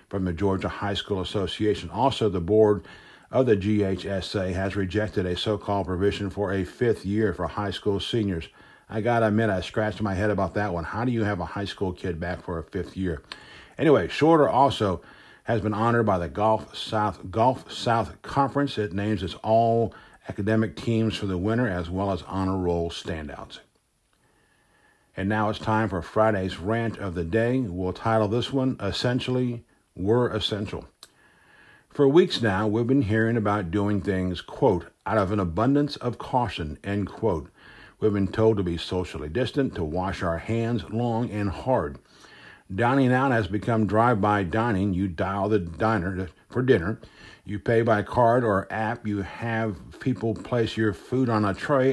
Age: 50-69